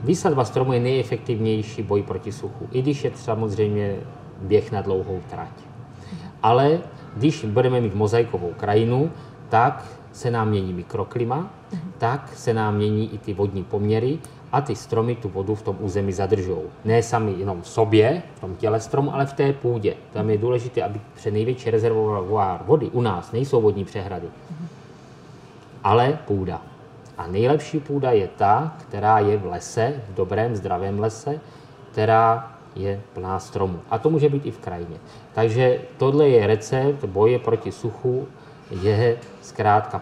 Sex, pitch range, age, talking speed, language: male, 105-135 Hz, 30-49, 155 wpm, Czech